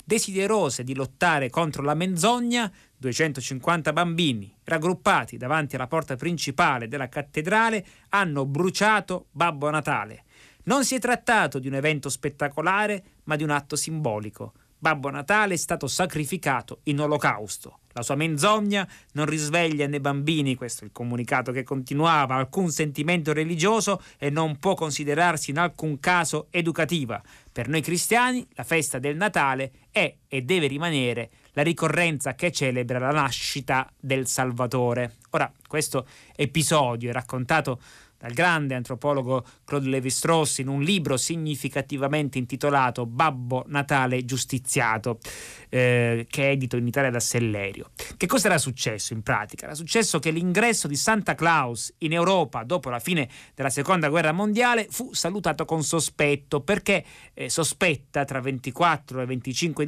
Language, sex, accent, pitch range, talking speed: Italian, male, native, 130-170 Hz, 145 wpm